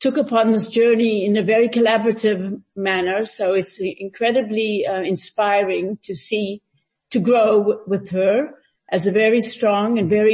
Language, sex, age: Polish, female, 50-69